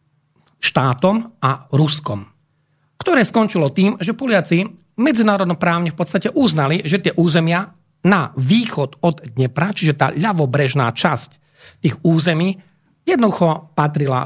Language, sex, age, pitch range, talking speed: Slovak, male, 40-59, 145-180 Hz, 115 wpm